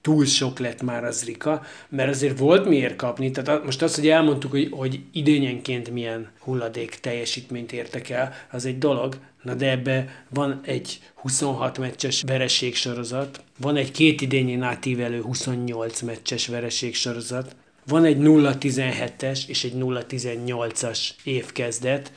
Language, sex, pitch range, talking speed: Hungarian, male, 125-140 Hz, 140 wpm